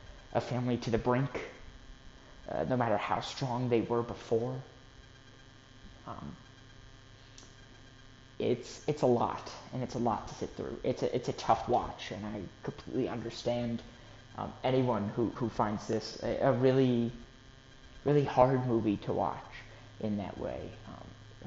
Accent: American